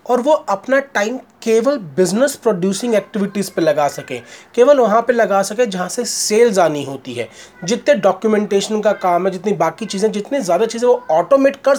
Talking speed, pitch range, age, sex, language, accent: 185 wpm, 180-225 Hz, 30-49, male, Hindi, native